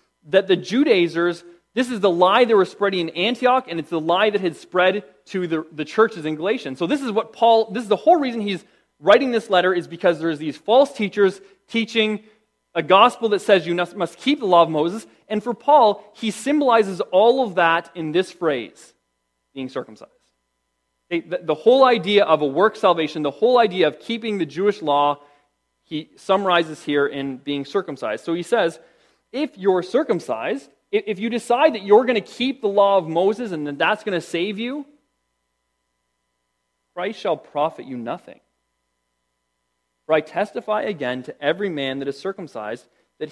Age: 30-49